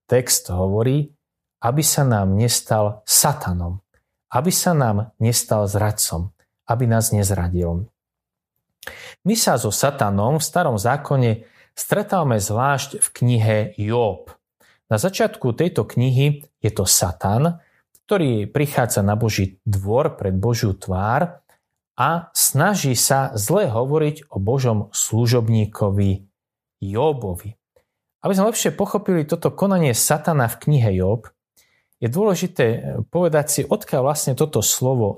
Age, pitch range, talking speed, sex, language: 30-49, 105-150 Hz, 120 wpm, male, Slovak